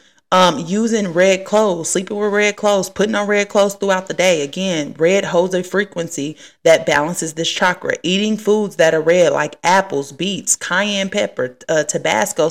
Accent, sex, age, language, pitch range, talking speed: American, female, 30-49, English, 155-195 Hz, 175 wpm